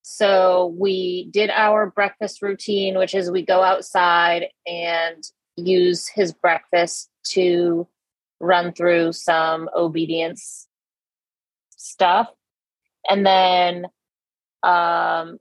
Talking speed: 95 wpm